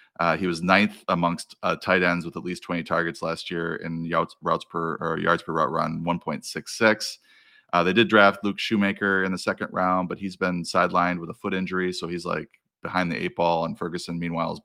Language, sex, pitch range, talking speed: English, male, 85-95 Hz, 230 wpm